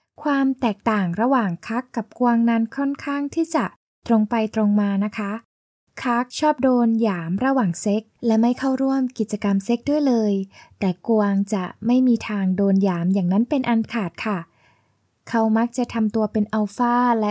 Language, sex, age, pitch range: Thai, female, 10-29, 200-250 Hz